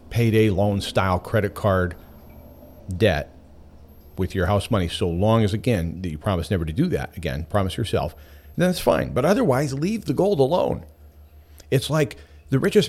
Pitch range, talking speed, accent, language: 80-115 Hz, 170 wpm, American, English